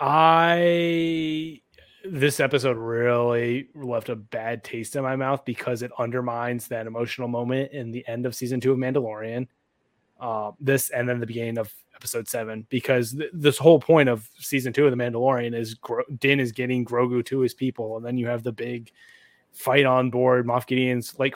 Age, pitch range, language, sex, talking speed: 20-39, 120-140 Hz, English, male, 180 wpm